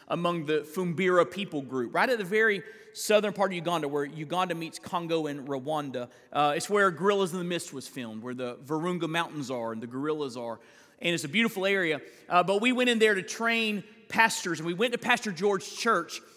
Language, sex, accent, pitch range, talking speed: English, male, American, 155-225 Hz, 215 wpm